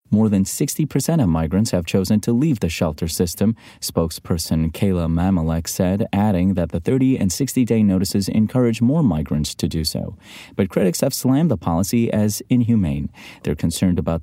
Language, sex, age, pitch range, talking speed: English, male, 30-49, 85-115 Hz, 175 wpm